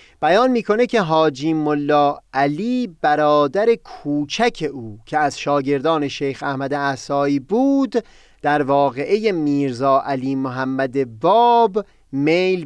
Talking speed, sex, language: 110 wpm, male, Persian